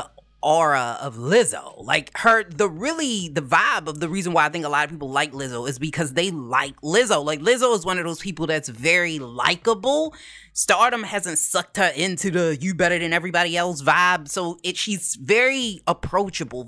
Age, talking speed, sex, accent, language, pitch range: 20-39, 190 wpm, female, American, English, 155-220 Hz